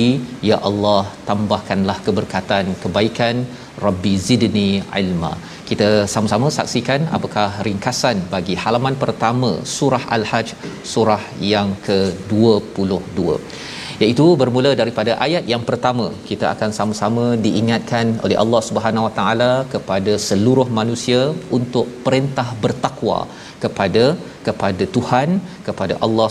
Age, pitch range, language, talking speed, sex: 40-59, 105-130 Hz, Malayalam, 105 wpm, male